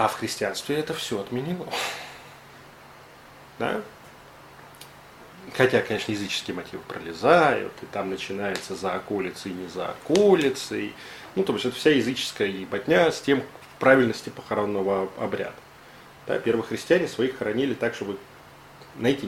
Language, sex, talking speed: Russian, male, 130 wpm